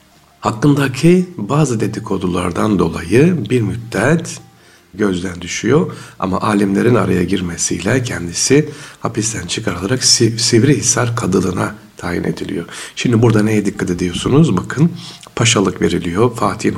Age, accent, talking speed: 60-79, native, 100 wpm